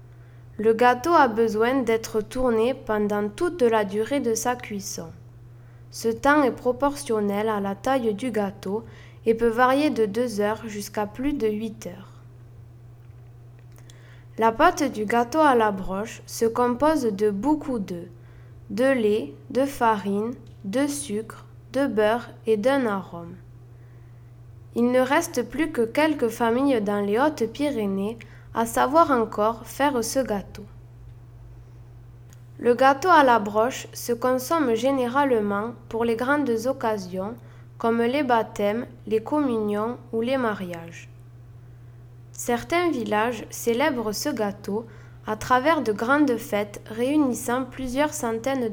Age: 20-39